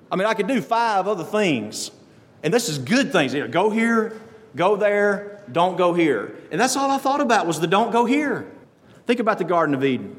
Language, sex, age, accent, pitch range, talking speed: English, male, 40-59, American, 150-210 Hz, 220 wpm